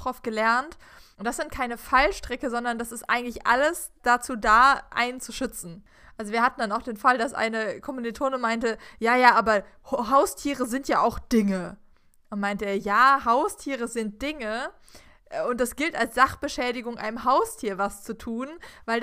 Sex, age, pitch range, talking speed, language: female, 20-39, 215-260 Hz, 165 wpm, German